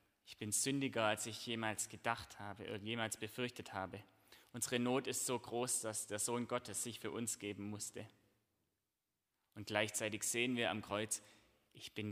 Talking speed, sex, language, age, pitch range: 165 wpm, male, German, 20-39, 100-115 Hz